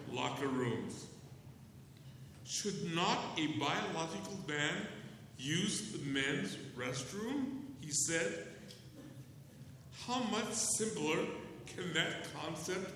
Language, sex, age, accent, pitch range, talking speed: English, male, 60-79, American, 130-165 Hz, 90 wpm